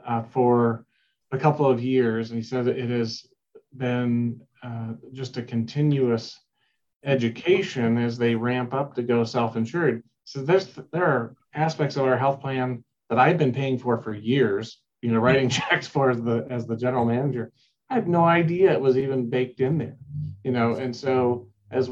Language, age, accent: English, 40-59, American